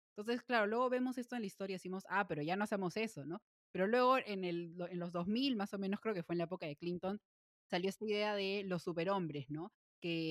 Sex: female